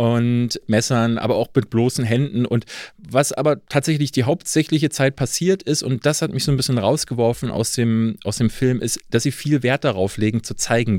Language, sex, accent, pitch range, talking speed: German, male, German, 110-145 Hz, 200 wpm